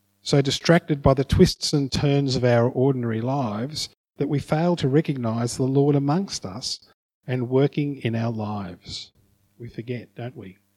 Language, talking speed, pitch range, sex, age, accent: English, 160 wpm, 110-150 Hz, male, 50-69, Australian